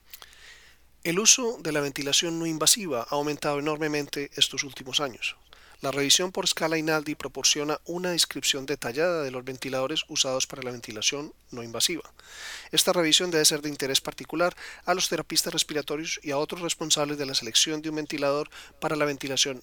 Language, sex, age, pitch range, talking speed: Spanish, male, 40-59, 140-160 Hz, 170 wpm